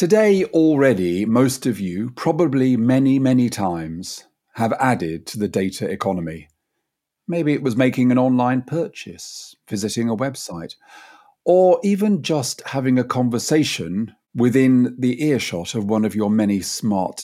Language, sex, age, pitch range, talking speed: English, male, 40-59, 105-155 Hz, 140 wpm